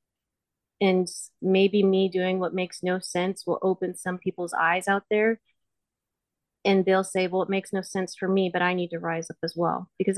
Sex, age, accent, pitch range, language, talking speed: female, 30-49, American, 175-195 Hz, English, 200 wpm